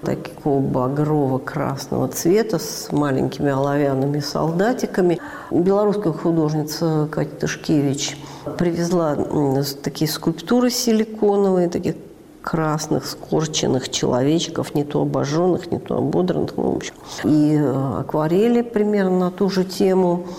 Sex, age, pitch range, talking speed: female, 50-69, 150-180 Hz, 95 wpm